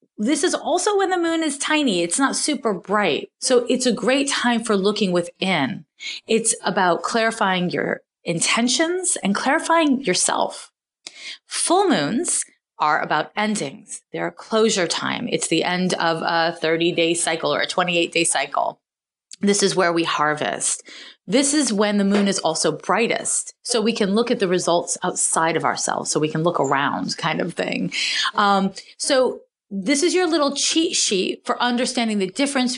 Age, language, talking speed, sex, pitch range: 30-49, English, 165 wpm, female, 180-260 Hz